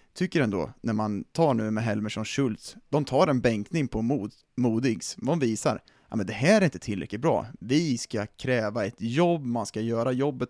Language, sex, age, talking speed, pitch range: Swedish, male, 30-49, 200 wpm, 110-135 Hz